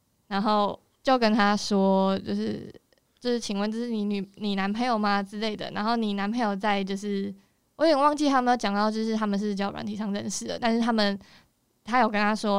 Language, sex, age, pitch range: Chinese, female, 20-39, 200-225 Hz